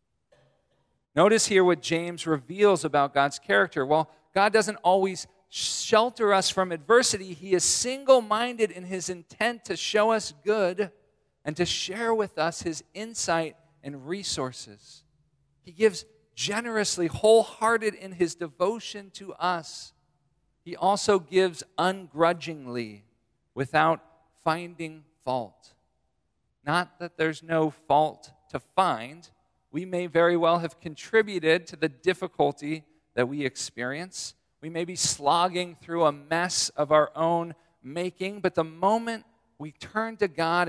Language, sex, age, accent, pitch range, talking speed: English, male, 50-69, American, 150-190 Hz, 130 wpm